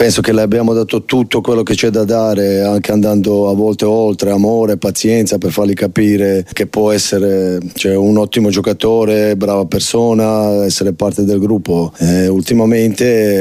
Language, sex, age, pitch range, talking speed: Italian, male, 30-49, 100-115 Hz, 160 wpm